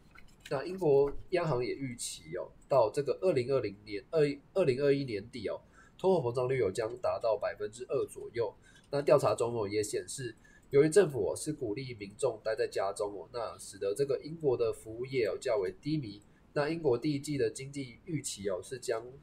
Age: 20-39